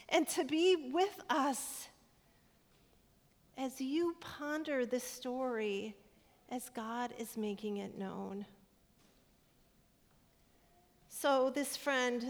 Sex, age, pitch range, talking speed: female, 40-59, 205-250 Hz, 95 wpm